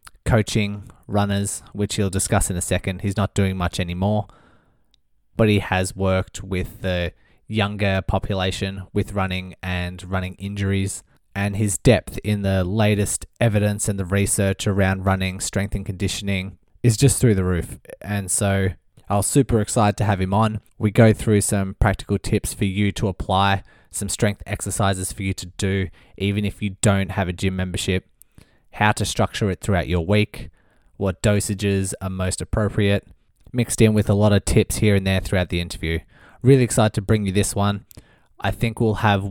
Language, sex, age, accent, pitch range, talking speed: English, male, 20-39, Australian, 95-105 Hz, 180 wpm